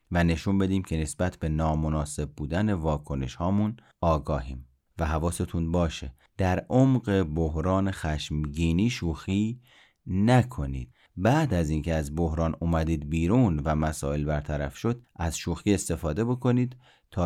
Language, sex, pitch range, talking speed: Persian, male, 80-110 Hz, 125 wpm